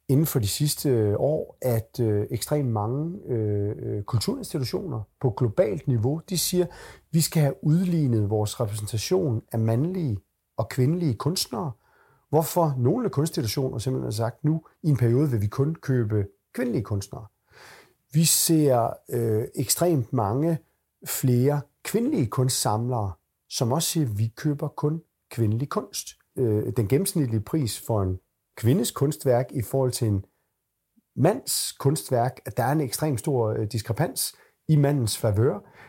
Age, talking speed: 40-59, 140 wpm